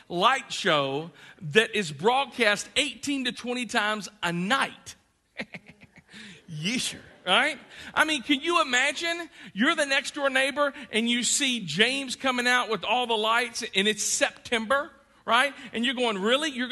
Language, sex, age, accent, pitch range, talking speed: English, male, 40-59, American, 185-255 Hz, 150 wpm